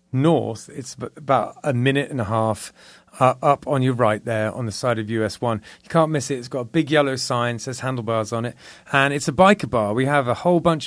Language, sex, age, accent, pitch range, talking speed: English, male, 30-49, British, 120-150 Hz, 245 wpm